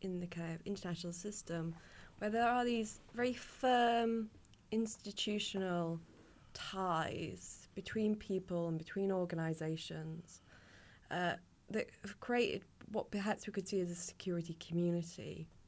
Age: 20-39